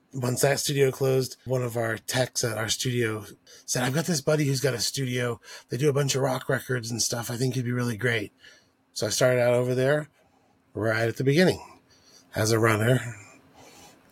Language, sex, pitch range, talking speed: English, male, 120-135 Hz, 210 wpm